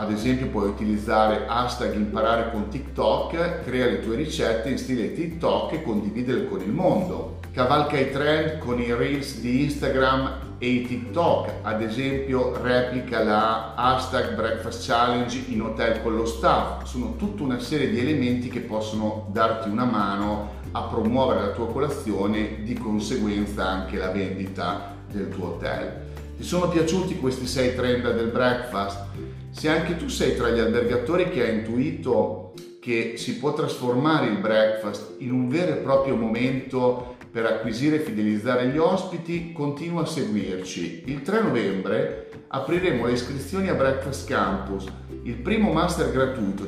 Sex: male